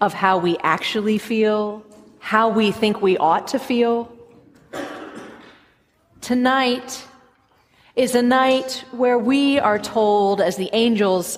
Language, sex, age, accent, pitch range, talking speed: English, female, 30-49, American, 195-250 Hz, 120 wpm